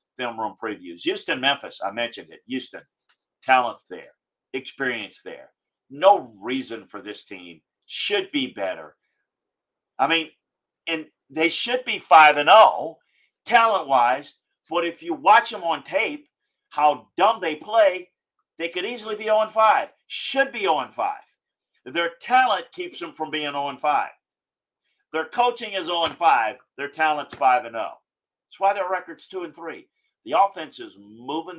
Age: 50-69